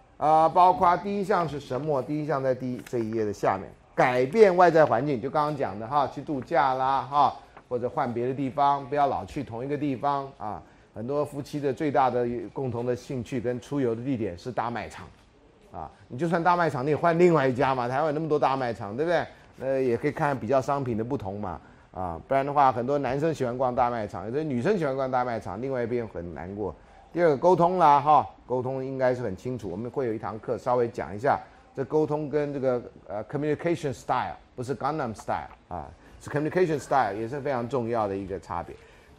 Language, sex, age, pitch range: Chinese, male, 30-49, 120-155 Hz